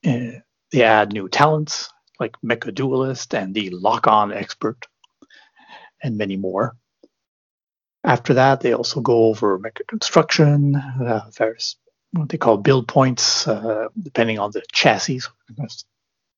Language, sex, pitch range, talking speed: English, male, 110-150 Hz, 130 wpm